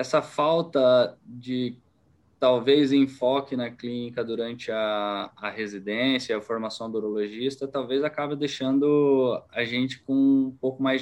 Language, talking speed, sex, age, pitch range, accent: Portuguese, 130 wpm, male, 20-39, 115-145 Hz, Brazilian